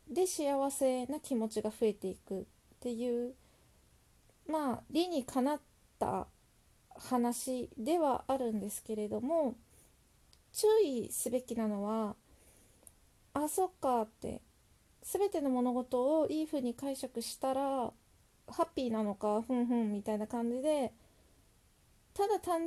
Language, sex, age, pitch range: Japanese, female, 20-39, 225-290 Hz